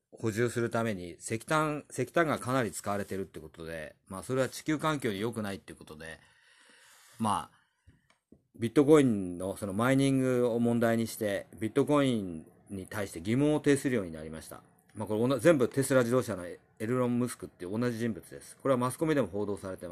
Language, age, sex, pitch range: Japanese, 40-59, male, 95-135 Hz